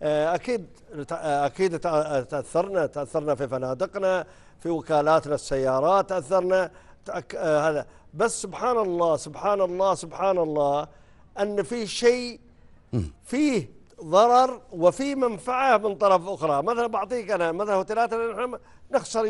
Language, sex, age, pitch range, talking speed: Arabic, male, 50-69, 160-210 Hz, 105 wpm